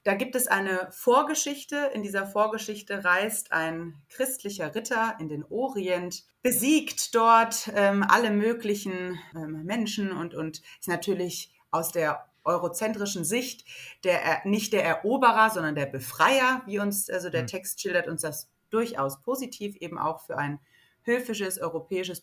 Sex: female